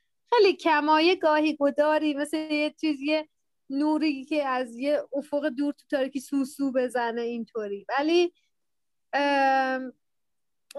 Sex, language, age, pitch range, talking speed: female, Persian, 30-49, 250-325 Hz, 110 wpm